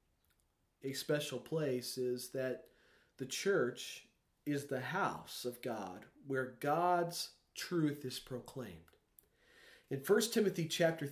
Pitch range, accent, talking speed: 105-165 Hz, American, 115 wpm